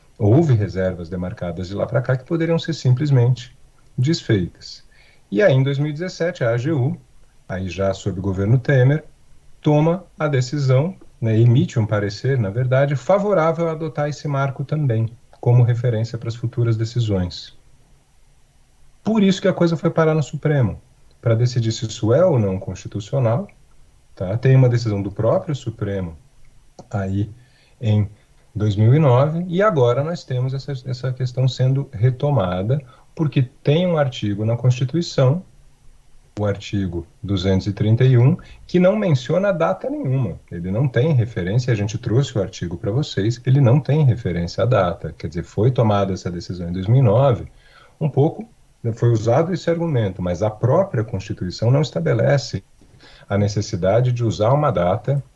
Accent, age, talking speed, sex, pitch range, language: Brazilian, 40-59, 150 wpm, male, 105-145 Hz, Portuguese